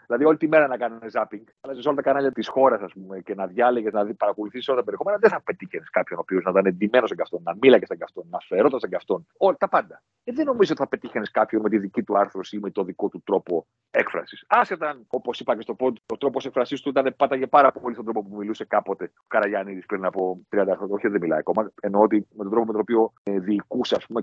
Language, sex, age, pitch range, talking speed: Greek, male, 40-59, 100-150 Hz, 240 wpm